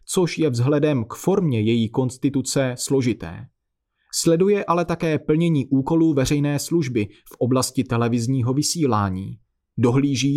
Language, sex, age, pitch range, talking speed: Czech, male, 30-49, 120-155 Hz, 115 wpm